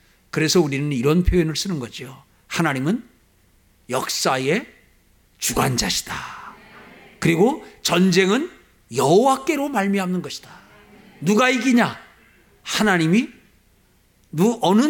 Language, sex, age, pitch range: Korean, male, 50-69, 180-255 Hz